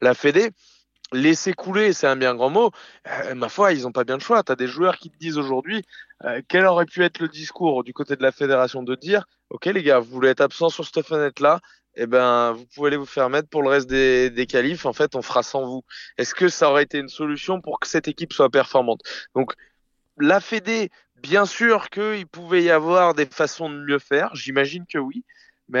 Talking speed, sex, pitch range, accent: 240 wpm, male, 125-165 Hz, French